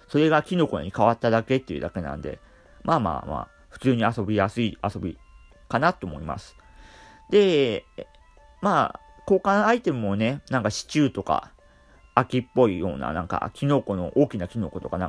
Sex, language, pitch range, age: male, Japanese, 95-140 Hz, 40-59